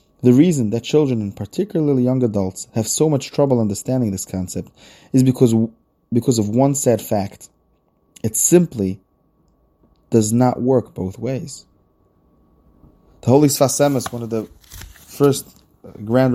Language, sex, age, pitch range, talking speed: English, male, 30-49, 110-140 Hz, 135 wpm